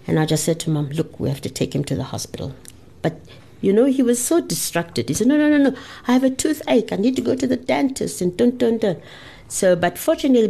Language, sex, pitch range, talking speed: English, female, 140-195 Hz, 265 wpm